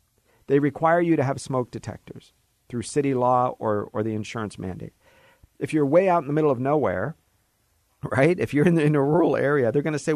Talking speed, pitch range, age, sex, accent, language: 215 wpm, 105-150 Hz, 50-69, male, American, English